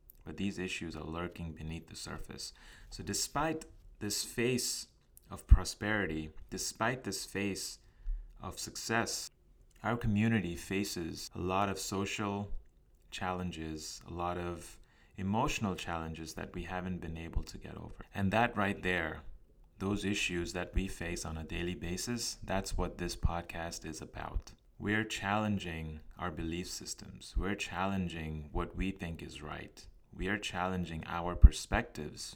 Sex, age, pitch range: male, 30-49, 80-100 Hz